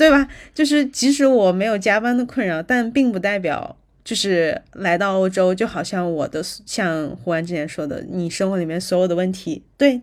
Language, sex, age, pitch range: Chinese, female, 20-39, 170-220 Hz